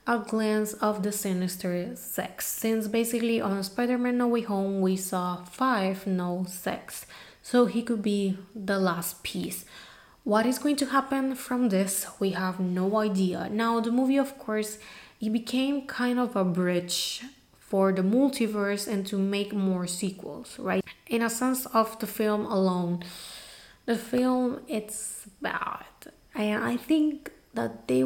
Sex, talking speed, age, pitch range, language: female, 155 wpm, 20-39, 190-230 Hz, English